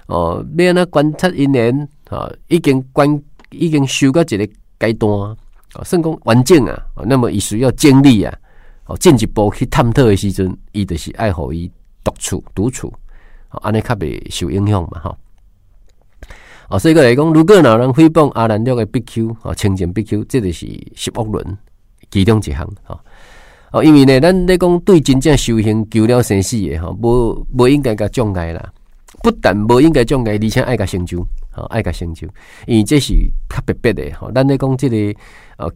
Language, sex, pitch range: Chinese, male, 95-130 Hz